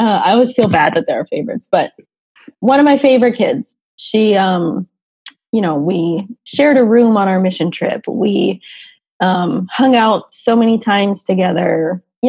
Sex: female